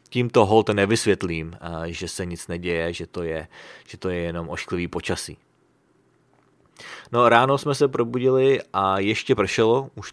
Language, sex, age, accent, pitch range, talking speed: English, male, 30-49, Czech, 95-120 Hz, 150 wpm